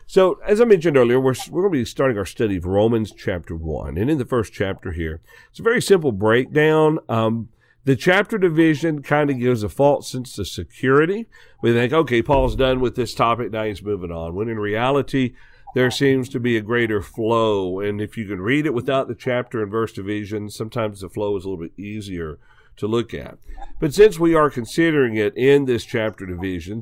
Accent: American